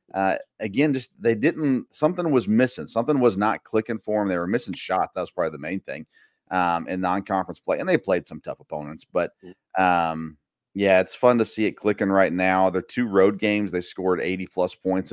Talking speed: 215 wpm